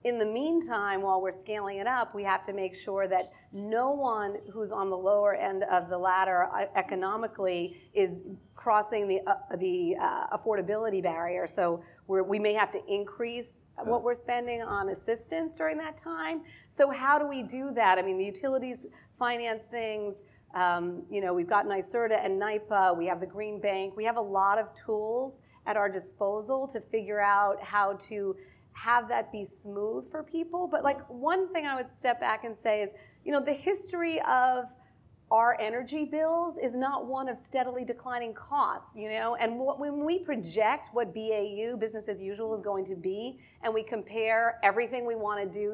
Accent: American